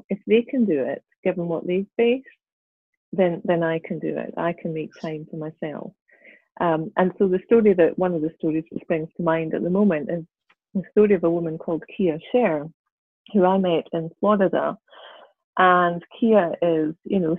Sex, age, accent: female, 30-49, British